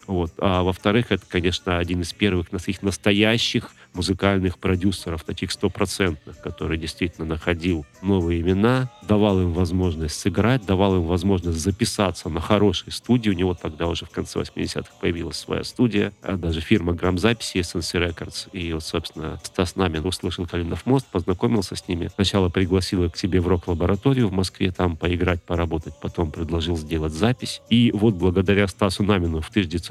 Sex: male